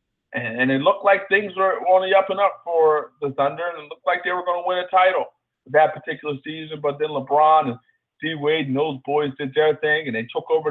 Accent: American